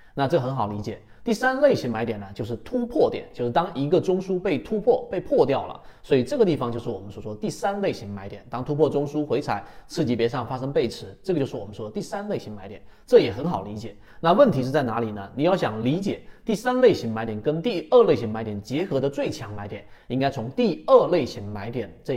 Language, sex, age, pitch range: Chinese, male, 30-49, 115-170 Hz